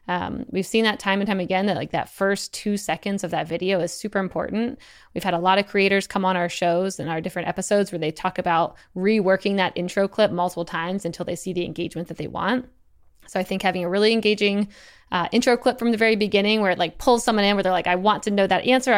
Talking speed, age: 255 wpm, 20-39